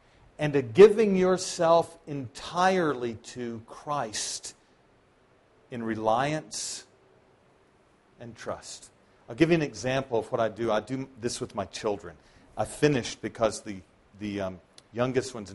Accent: American